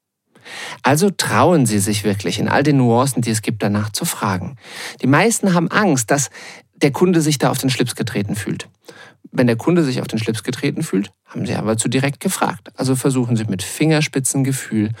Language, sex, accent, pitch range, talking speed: German, male, German, 115-150 Hz, 195 wpm